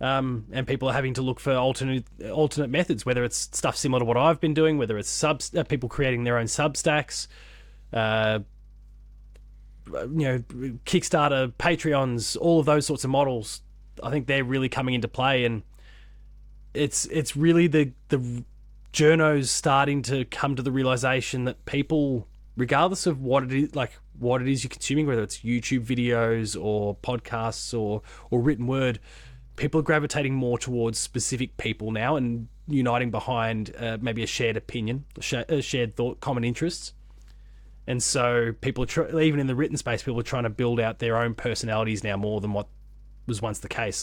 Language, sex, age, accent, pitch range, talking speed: English, male, 20-39, Australian, 115-140 Hz, 175 wpm